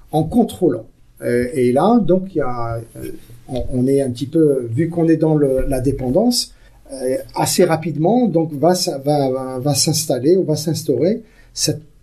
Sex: male